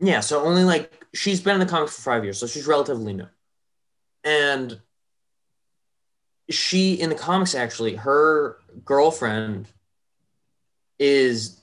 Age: 20-39